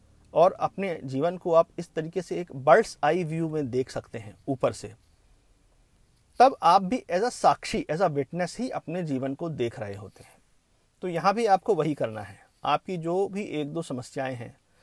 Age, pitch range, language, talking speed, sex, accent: 50-69, 130-190 Hz, Hindi, 200 wpm, male, native